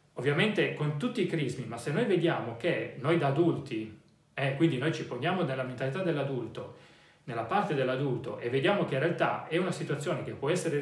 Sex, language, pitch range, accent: male, Italian, 130-170 Hz, native